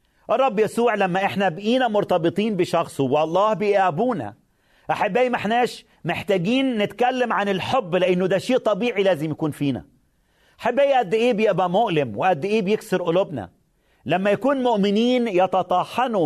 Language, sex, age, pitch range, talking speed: Arabic, male, 40-59, 155-220 Hz, 135 wpm